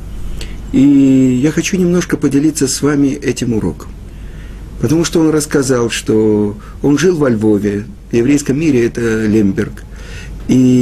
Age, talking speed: 50-69, 135 wpm